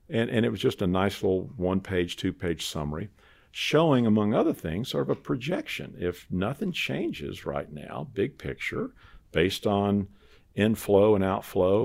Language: English